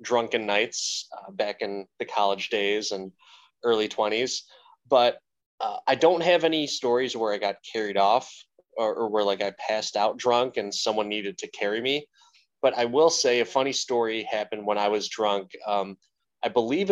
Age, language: 20-39, English